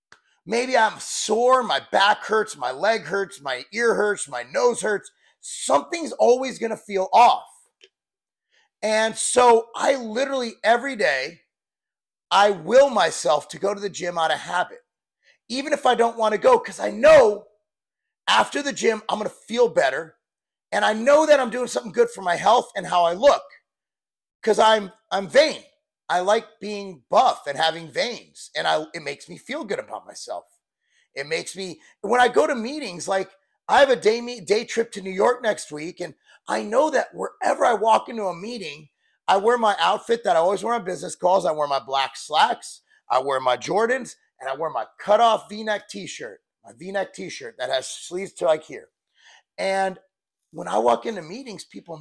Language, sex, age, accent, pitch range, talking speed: English, male, 30-49, American, 195-285 Hz, 190 wpm